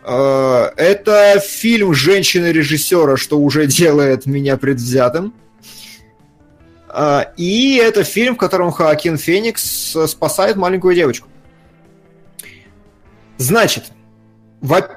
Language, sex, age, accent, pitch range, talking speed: Russian, male, 20-39, native, 130-175 Hz, 80 wpm